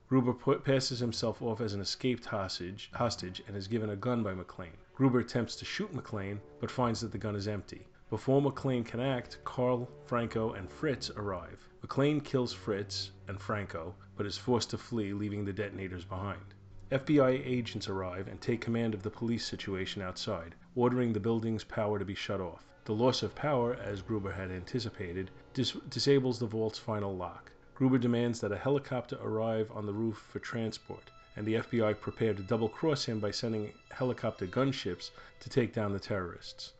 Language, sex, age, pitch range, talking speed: English, male, 30-49, 100-125 Hz, 185 wpm